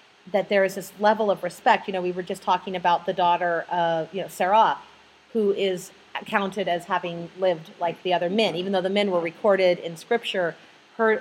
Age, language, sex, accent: 40-59, English, female, American